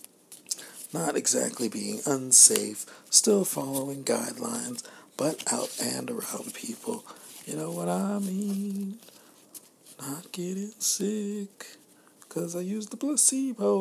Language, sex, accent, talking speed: English, male, American, 110 wpm